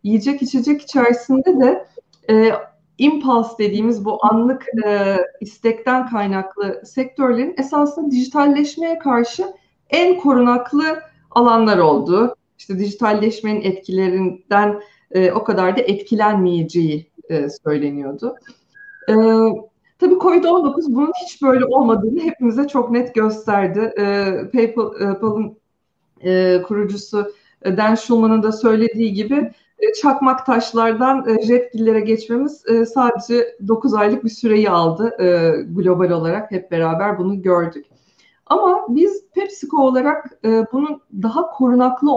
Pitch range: 205-265 Hz